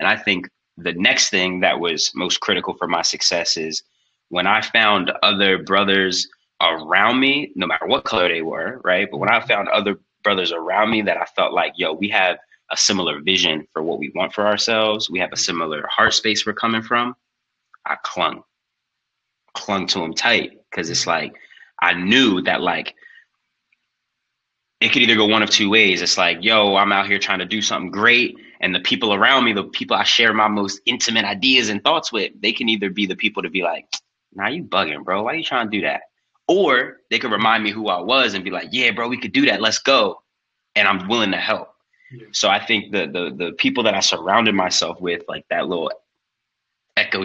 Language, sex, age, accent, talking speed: English, male, 30-49, American, 215 wpm